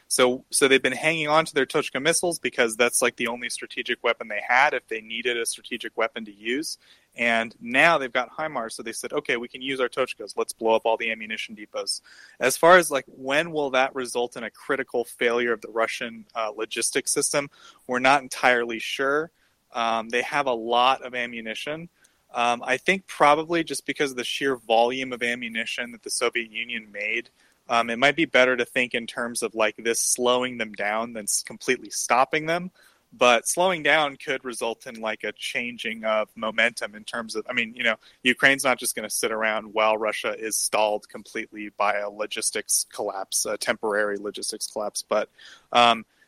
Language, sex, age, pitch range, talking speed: English, male, 30-49, 115-135 Hz, 200 wpm